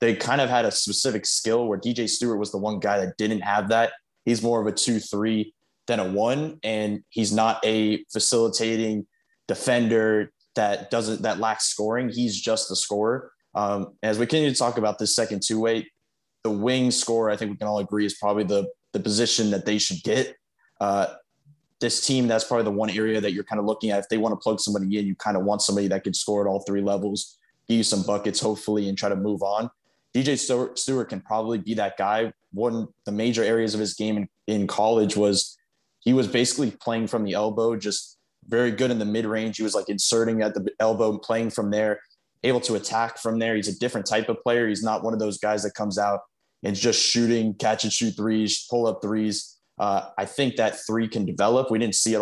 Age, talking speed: 20-39, 225 wpm